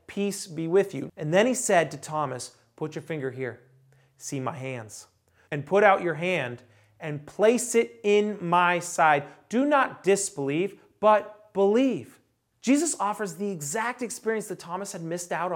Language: English